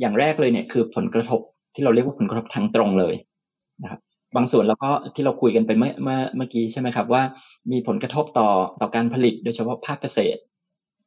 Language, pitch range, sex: Thai, 115-160 Hz, male